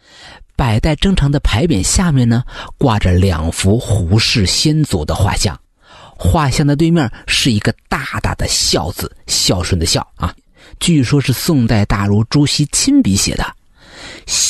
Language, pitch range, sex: Chinese, 90-135 Hz, male